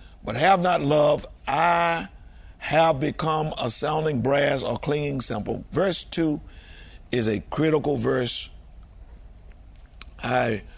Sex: male